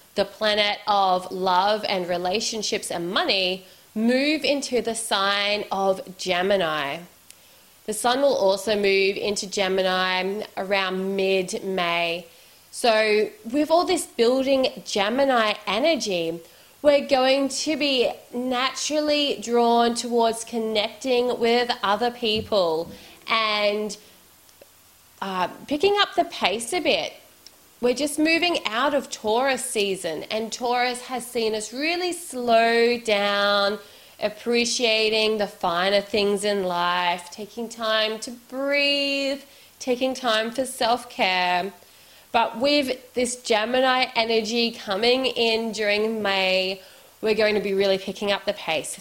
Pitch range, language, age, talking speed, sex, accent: 195-250 Hz, English, 20-39, 120 wpm, female, Australian